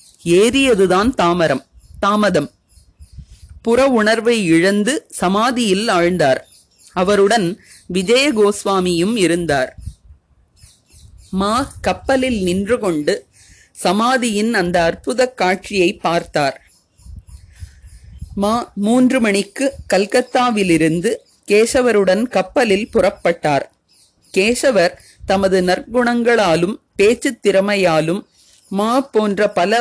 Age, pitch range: 30-49, 170-235 Hz